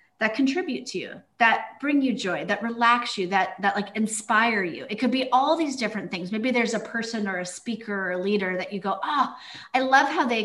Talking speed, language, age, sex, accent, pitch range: 235 wpm, Spanish, 30-49, female, American, 195-250 Hz